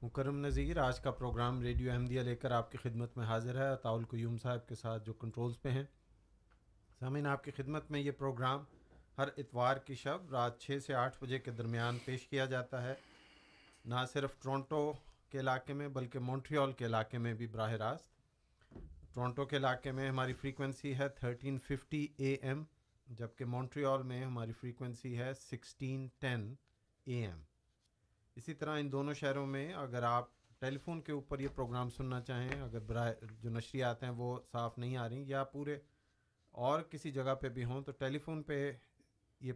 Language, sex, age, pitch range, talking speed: Urdu, male, 40-59, 120-140 Hz, 180 wpm